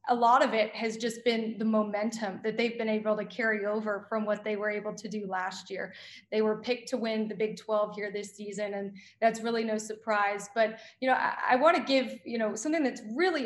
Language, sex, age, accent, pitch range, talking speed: English, female, 20-39, American, 215-245 Hz, 235 wpm